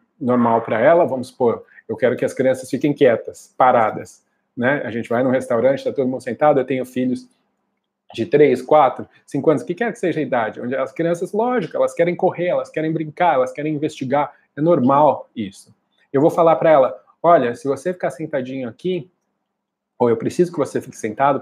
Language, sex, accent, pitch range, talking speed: Portuguese, male, Brazilian, 120-160 Hz, 200 wpm